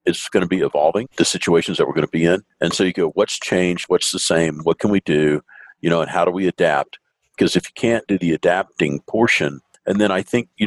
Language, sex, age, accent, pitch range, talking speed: English, male, 50-69, American, 80-90 Hz, 260 wpm